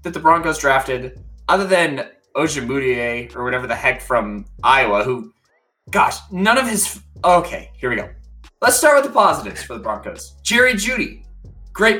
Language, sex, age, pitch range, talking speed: English, male, 20-39, 120-195 Hz, 165 wpm